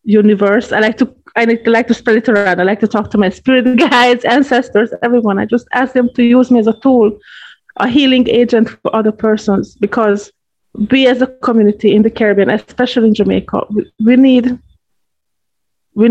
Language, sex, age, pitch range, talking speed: English, female, 30-49, 205-245 Hz, 190 wpm